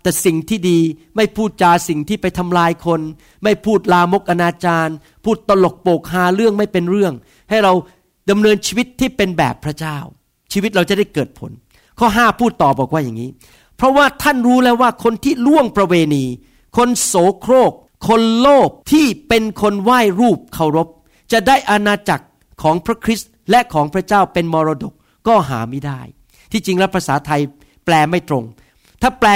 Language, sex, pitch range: Thai, male, 160-225 Hz